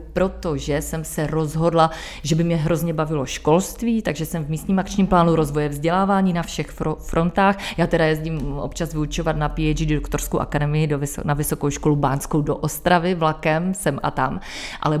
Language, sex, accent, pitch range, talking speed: Czech, female, native, 155-175 Hz, 170 wpm